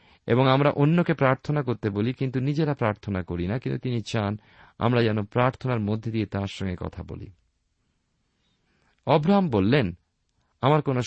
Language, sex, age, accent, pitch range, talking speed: Bengali, male, 50-69, native, 95-130 Hz, 140 wpm